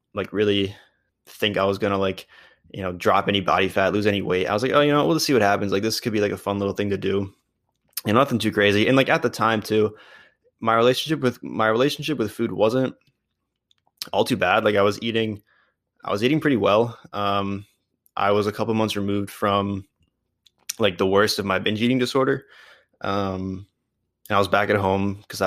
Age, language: 20-39, English